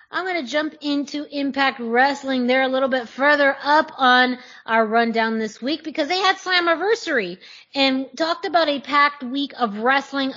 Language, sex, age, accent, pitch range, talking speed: English, female, 20-39, American, 205-255 Hz, 175 wpm